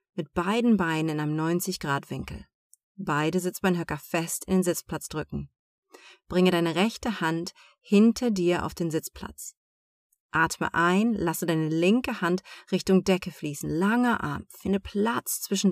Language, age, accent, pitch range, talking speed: German, 30-49, German, 170-215 Hz, 135 wpm